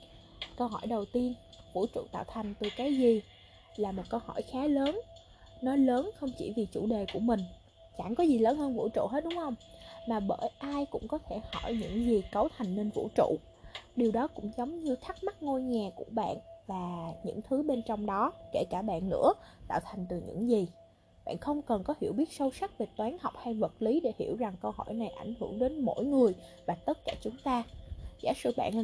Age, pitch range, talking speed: 10-29, 210-280 Hz, 230 wpm